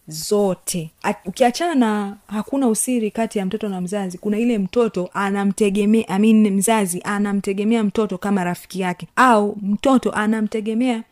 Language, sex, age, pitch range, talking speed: Swahili, female, 30-49, 175-215 Hz, 130 wpm